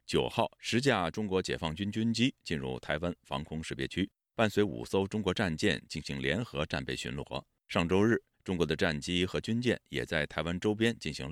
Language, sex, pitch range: Chinese, male, 70-100 Hz